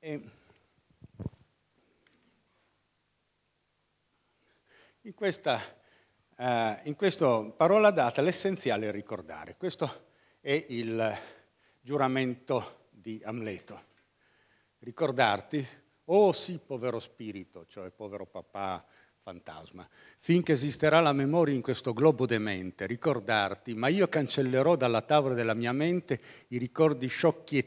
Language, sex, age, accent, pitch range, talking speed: Italian, male, 50-69, native, 110-155 Hz, 100 wpm